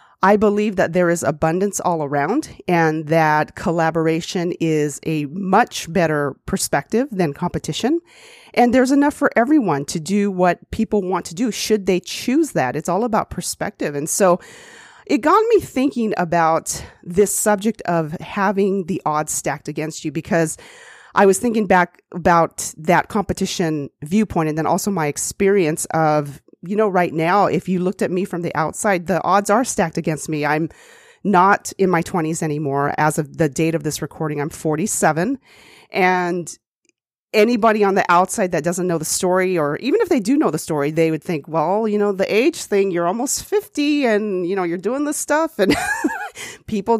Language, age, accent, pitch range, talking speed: English, 40-59, American, 165-235 Hz, 180 wpm